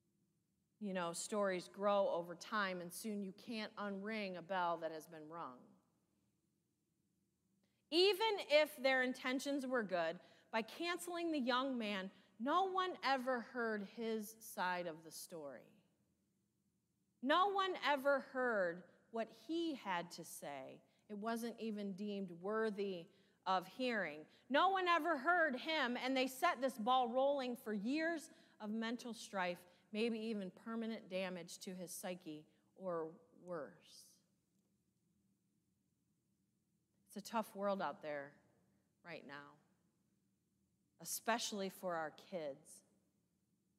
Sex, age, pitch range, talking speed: female, 30-49, 185-270 Hz, 125 wpm